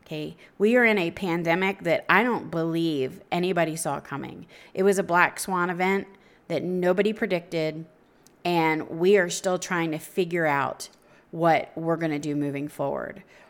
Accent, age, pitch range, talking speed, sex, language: American, 30-49, 170-220 Hz, 160 wpm, female, English